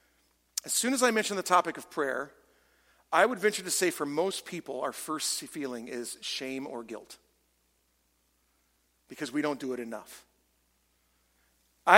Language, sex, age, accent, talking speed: English, male, 40-59, American, 155 wpm